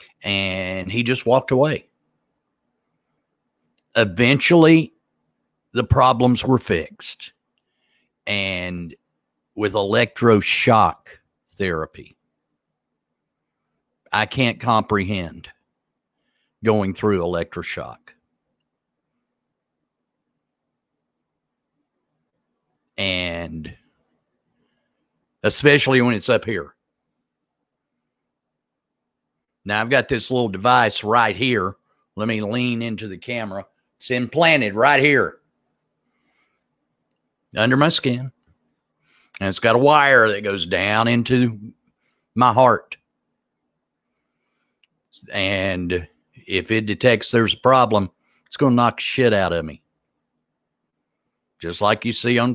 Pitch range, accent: 95-125 Hz, American